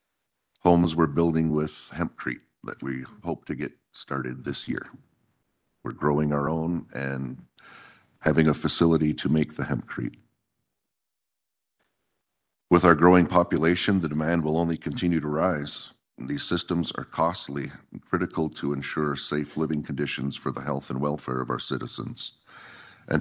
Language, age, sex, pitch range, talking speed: English, 50-69, male, 75-90 Hz, 145 wpm